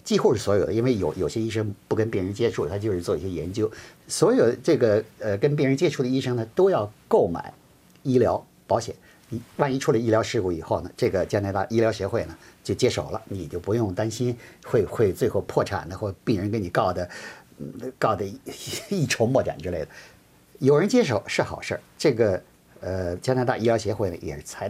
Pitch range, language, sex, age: 100-135 Hz, Chinese, male, 50-69